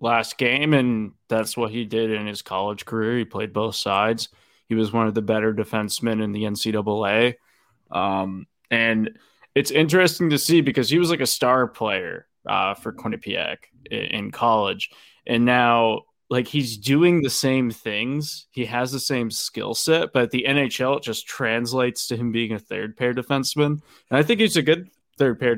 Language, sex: English, male